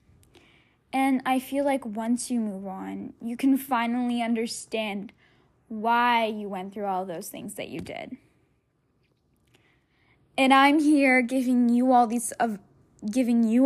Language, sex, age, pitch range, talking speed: English, female, 10-29, 215-265 Hz, 145 wpm